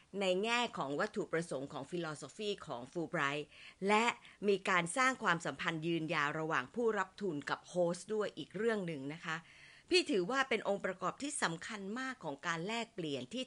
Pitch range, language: 170-245 Hz, Thai